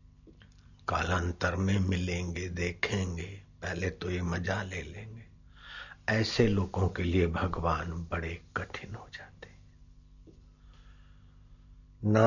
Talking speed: 100 wpm